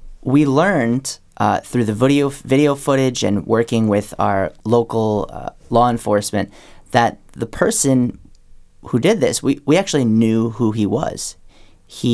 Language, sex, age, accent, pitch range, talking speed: English, male, 30-49, American, 105-130 Hz, 150 wpm